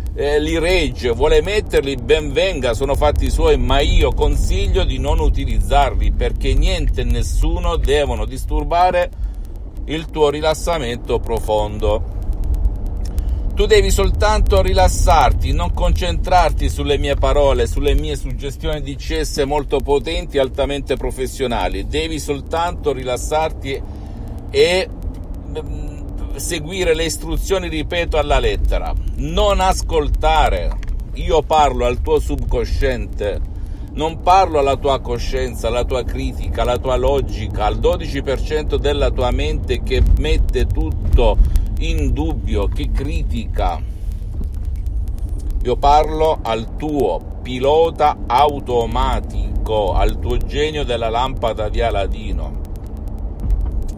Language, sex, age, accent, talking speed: Italian, male, 50-69, native, 110 wpm